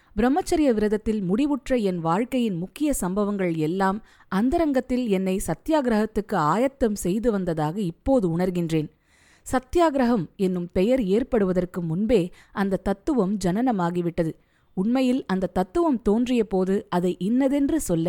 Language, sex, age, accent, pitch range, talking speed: Tamil, female, 20-39, native, 180-255 Hz, 105 wpm